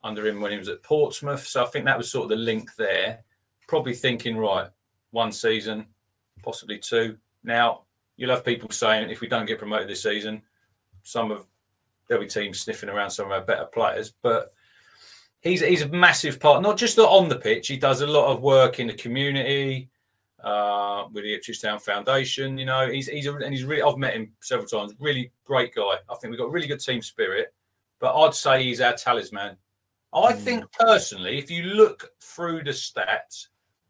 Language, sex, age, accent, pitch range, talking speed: English, male, 30-49, British, 110-150 Hz, 200 wpm